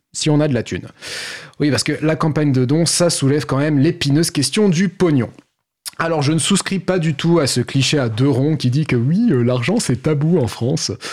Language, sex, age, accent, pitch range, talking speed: French, male, 30-49, French, 120-160 Hz, 230 wpm